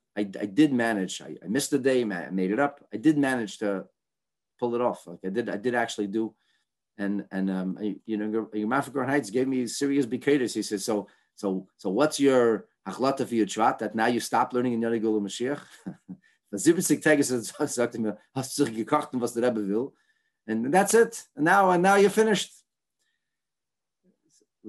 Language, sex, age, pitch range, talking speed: English, male, 40-59, 100-140 Hz, 175 wpm